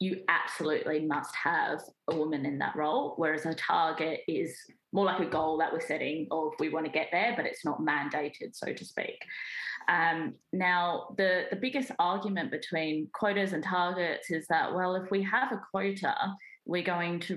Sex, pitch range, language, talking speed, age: female, 155-185 Hz, English, 185 wpm, 20-39